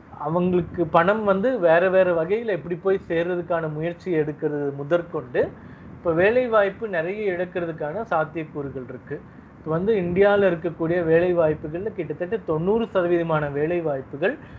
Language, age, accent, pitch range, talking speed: Tamil, 30-49, native, 150-190 Hz, 125 wpm